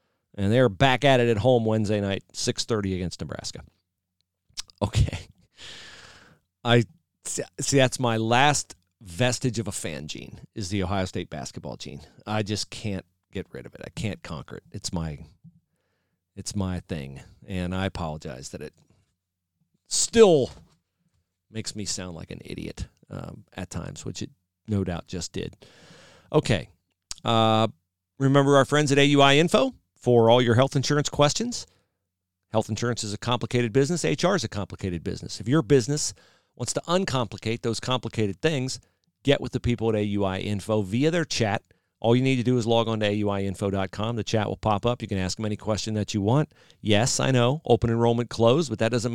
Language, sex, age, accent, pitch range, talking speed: English, male, 40-59, American, 95-125 Hz, 175 wpm